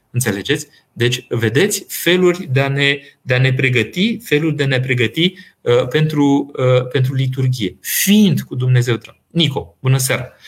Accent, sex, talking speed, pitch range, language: native, male, 90 wpm, 125-160 Hz, Romanian